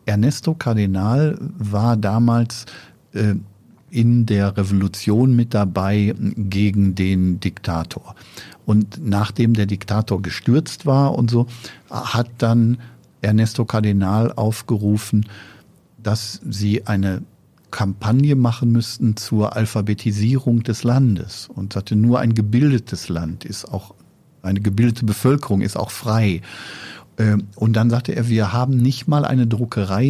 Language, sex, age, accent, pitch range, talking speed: German, male, 50-69, German, 100-120 Hz, 120 wpm